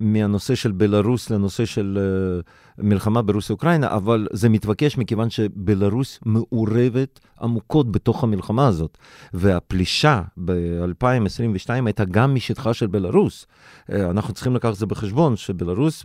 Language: Hebrew